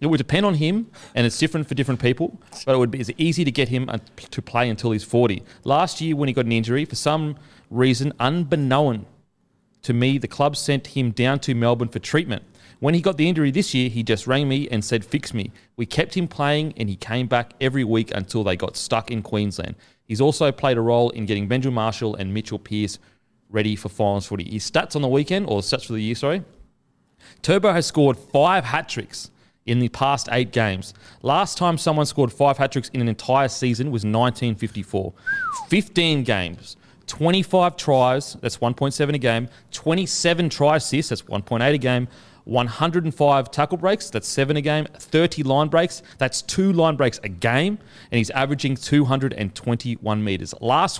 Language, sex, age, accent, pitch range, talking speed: English, male, 30-49, Australian, 115-150 Hz, 190 wpm